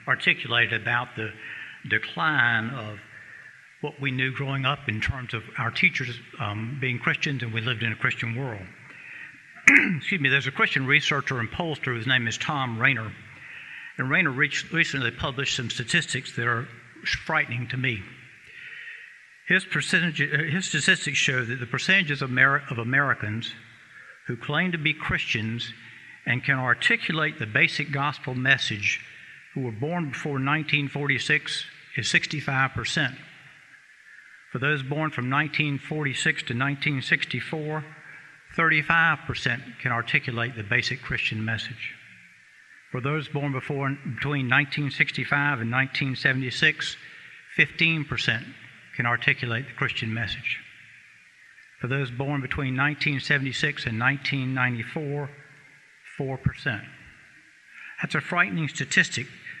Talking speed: 120 wpm